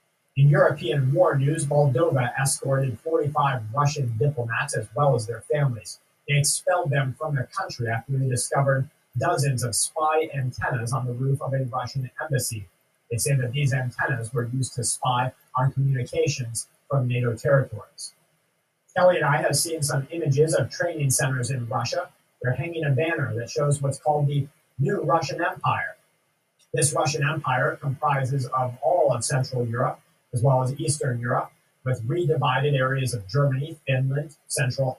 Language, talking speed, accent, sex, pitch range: English, 160 wpm, American, male, 130-155 Hz